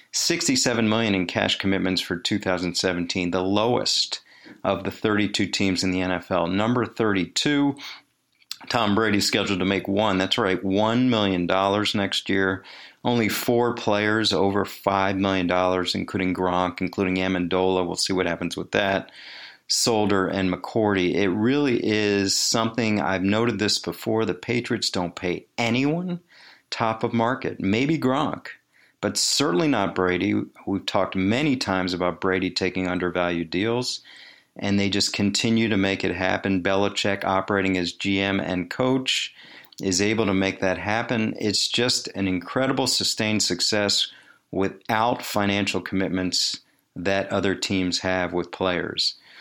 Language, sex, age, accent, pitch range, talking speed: English, male, 40-59, American, 95-115 Hz, 140 wpm